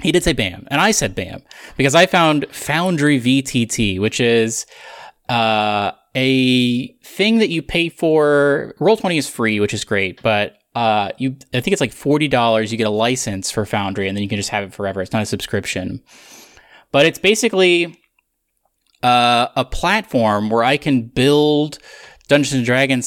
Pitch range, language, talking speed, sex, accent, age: 105-140 Hz, English, 175 wpm, male, American, 20-39